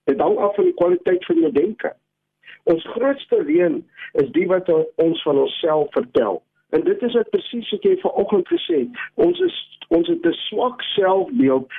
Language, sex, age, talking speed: English, male, 60-79, 185 wpm